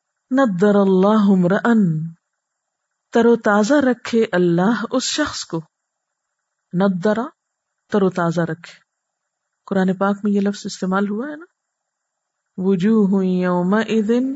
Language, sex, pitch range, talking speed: Urdu, female, 185-230 Hz, 110 wpm